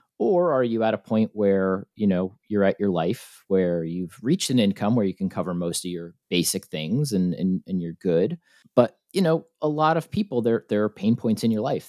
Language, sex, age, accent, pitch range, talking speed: English, male, 30-49, American, 90-115 Hz, 235 wpm